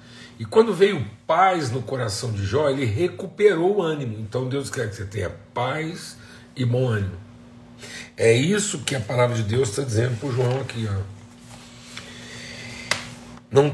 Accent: Brazilian